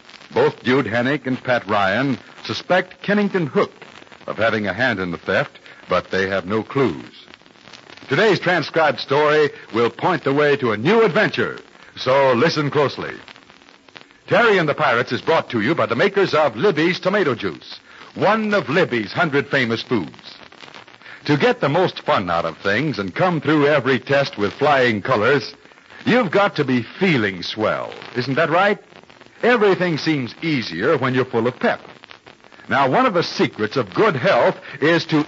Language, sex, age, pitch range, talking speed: English, male, 60-79, 130-205 Hz, 170 wpm